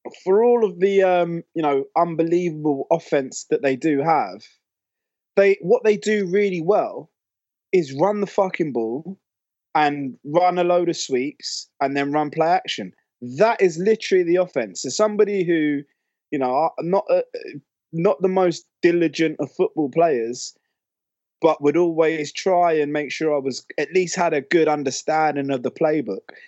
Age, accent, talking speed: 20-39, British, 165 wpm